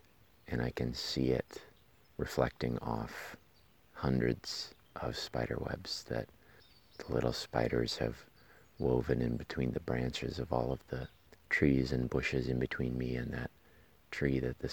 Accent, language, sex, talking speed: American, English, male, 145 wpm